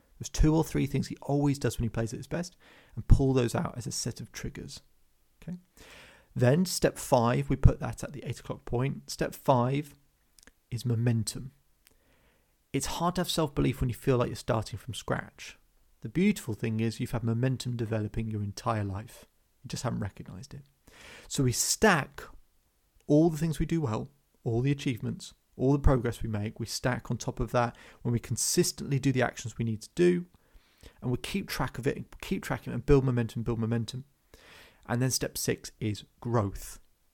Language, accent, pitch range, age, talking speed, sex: English, British, 115-140 Hz, 30-49, 195 wpm, male